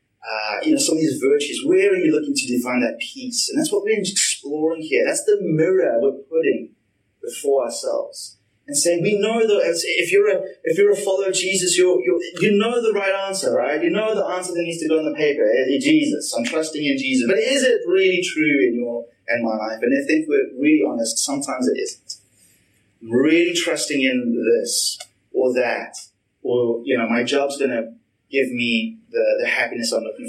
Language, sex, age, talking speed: English, male, 30-49, 210 wpm